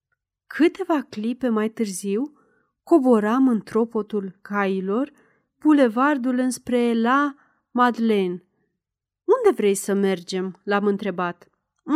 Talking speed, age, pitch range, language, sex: 105 wpm, 30-49, 200-275 Hz, Romanian, female